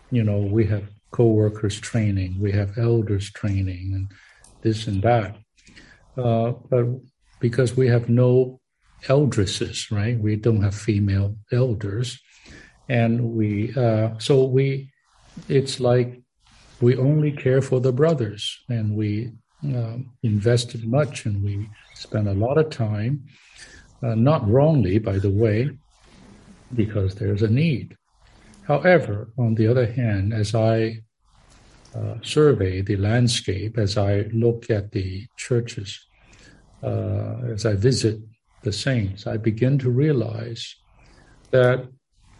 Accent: American